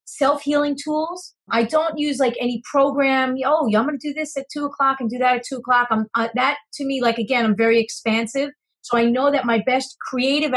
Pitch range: 210-255 Hz